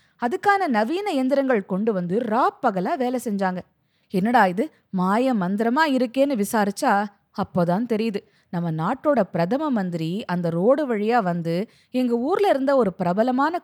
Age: 20-39